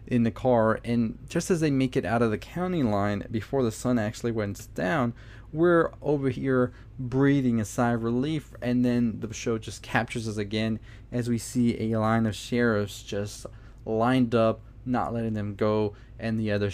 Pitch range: 105-125 Hz